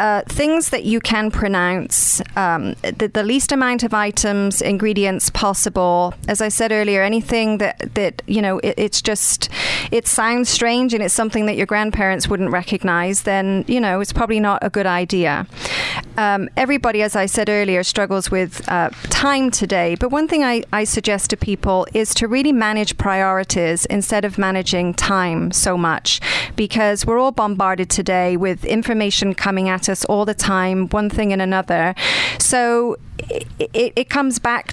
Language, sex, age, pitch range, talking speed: English, female, 40-59, 190-225 Hz, 175 wpm